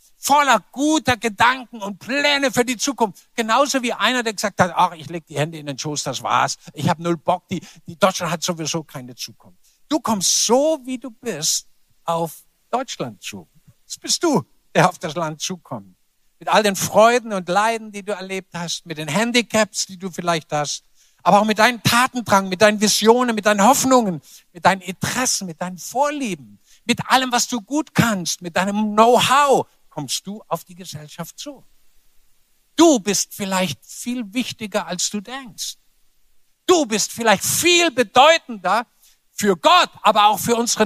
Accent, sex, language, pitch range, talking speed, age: German, male, German, 165-235 Hz, 175 wpm, 60-79